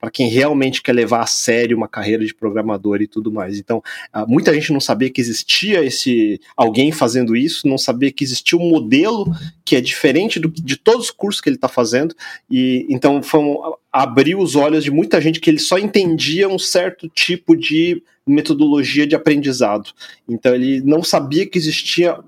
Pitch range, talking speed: 135-205 Hz, 190 wpm